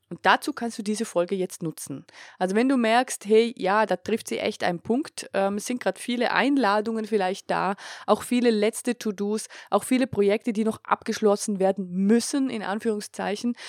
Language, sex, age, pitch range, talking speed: German, female, 20-39, 180-230 Hz, 185 wpm